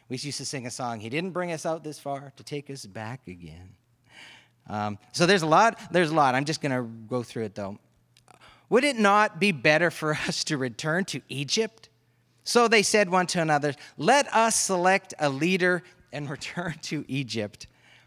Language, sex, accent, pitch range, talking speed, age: English, male, American, 125-180 Hz, 200 wpm, 30-49